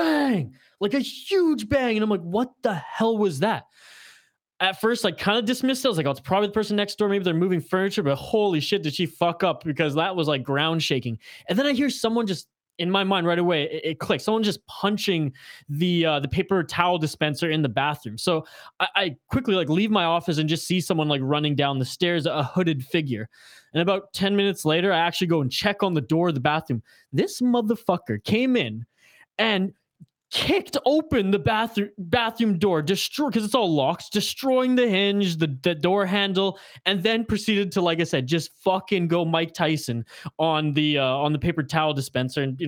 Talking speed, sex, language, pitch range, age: 215 wpm, male, English, 150-205 Hz, 20-39